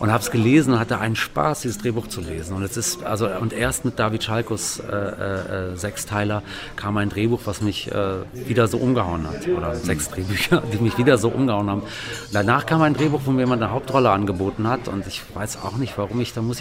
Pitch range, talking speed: 105-125 Hz, 215 wpm